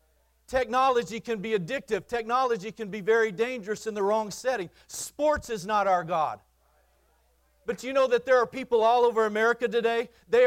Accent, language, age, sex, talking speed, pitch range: American, English, 40-59, male, 170 wpm, 215-250 Hz